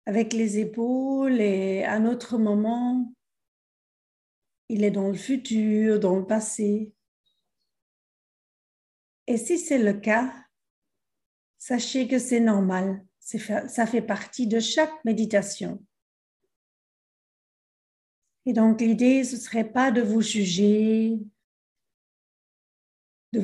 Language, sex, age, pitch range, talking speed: English, female, 50-69, 210-250 Hz, 115 wpm